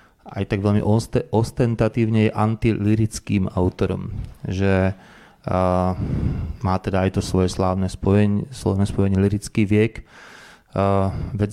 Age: 30-49